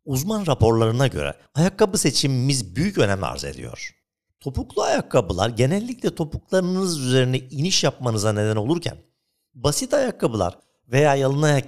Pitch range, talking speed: 130-200 Hz, 115 wpm